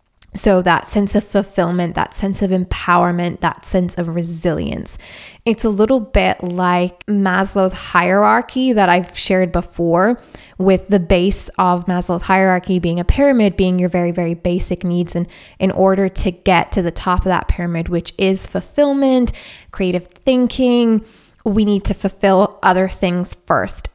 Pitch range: 180-210 Hz